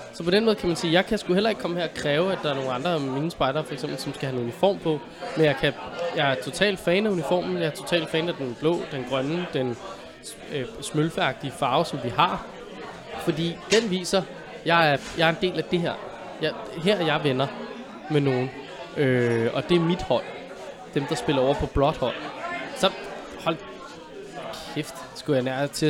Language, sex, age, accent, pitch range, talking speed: Danish, male, 20-39, native, 140-180 Hz, 220 wpm